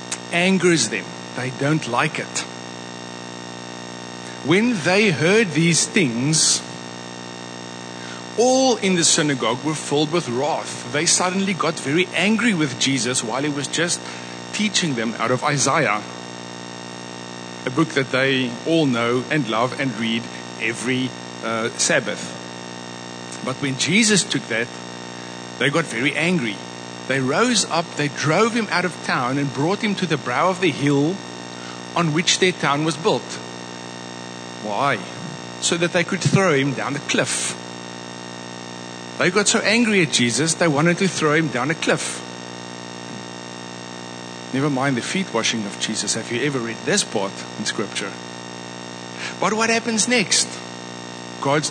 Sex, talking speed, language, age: male, 145 wpm, English, 50-69